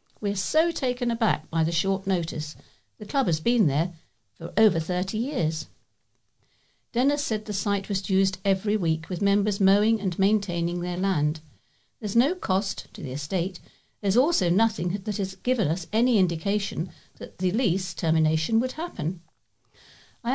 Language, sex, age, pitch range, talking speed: English, female, 50-69, 160-225 Hz, 160 wpm